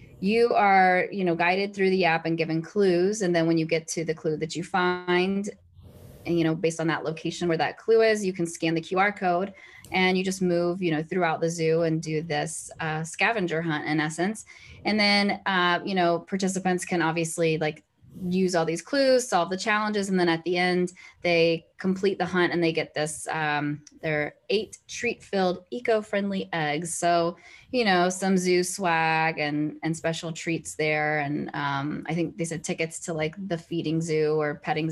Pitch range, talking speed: 160-185 Hz, 200 wpm